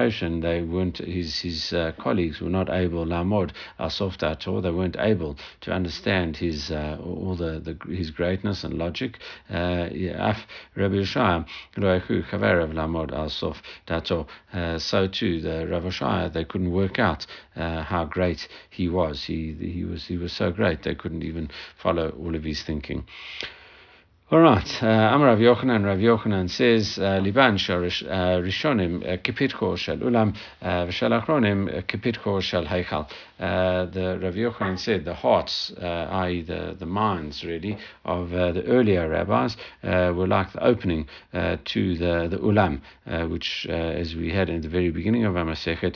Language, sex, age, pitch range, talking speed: English, male, 50-69, 85-100 Hz, 145 wpm